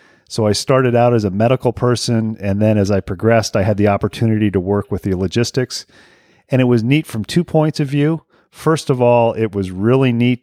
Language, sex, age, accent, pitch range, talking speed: English, male, 40-59, American, 100-120 Hz, 220 wpm